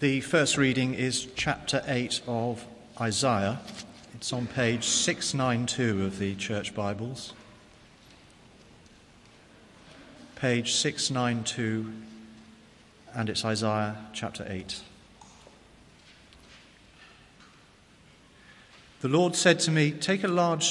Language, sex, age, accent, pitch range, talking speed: English, male, 40-59, British, 110-140 Hz, 90 wpm